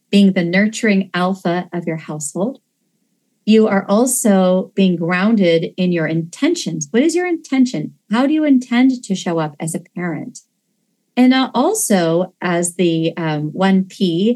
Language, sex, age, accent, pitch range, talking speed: English, female, 40-59, American, 175-230 Hz, 150 wpm